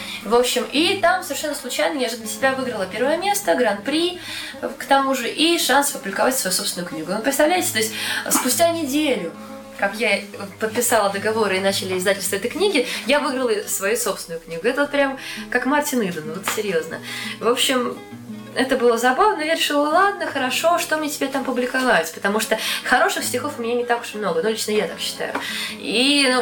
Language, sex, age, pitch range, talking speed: Russian, female, 20-39, 210-275 Hz, 185 wpm